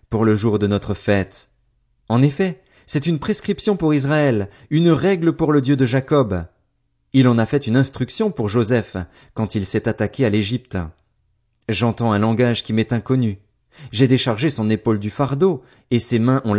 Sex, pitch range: male, 100-135 Hz